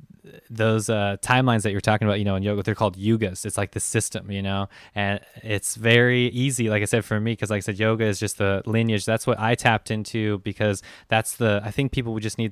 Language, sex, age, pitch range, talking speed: English, male, 20-39, 100-110 Hz, 250 wpm